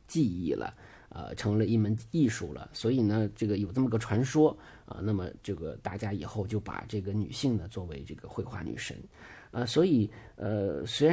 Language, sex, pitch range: Chinese, male, 105-125 Hz